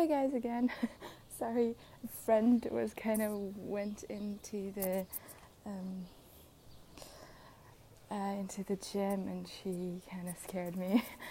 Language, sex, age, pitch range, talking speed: English, female, 20-39, 180-215 Hz, 115 wpm